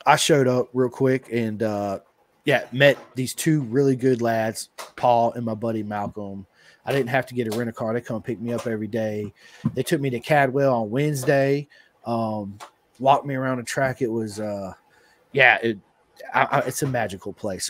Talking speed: 195 wpm